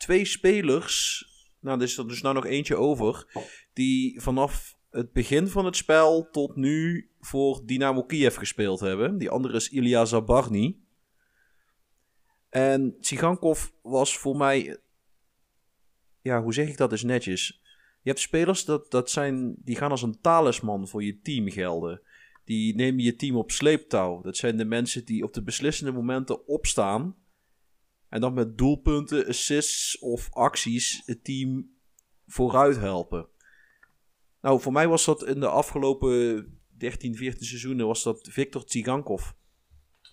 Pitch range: 115-140 Hz